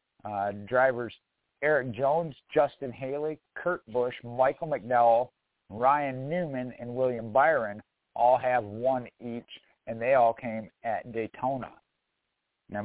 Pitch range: 115-145 Hz